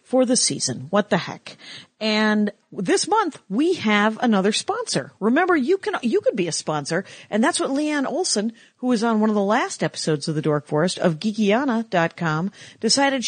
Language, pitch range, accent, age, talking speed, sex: English, 170-235 Hz, American, 50-69, 185 wpm, female